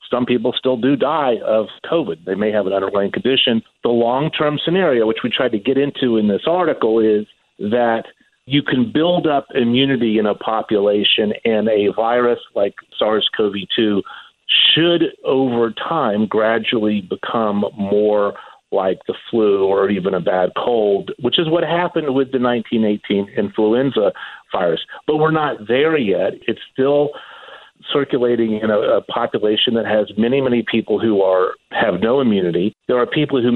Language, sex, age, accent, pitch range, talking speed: English, male, 50-69, American, 105-135 Hz, 155 wpm